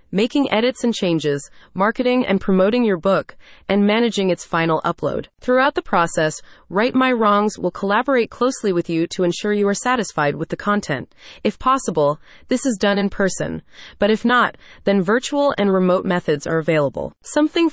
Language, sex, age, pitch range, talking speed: English, female, 30-49, 175-230 Hz, 175 wpm